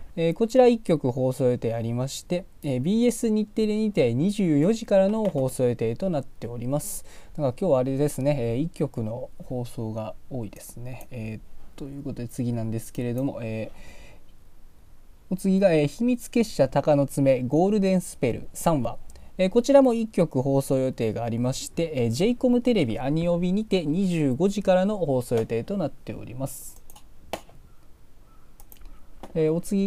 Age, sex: 20-39, male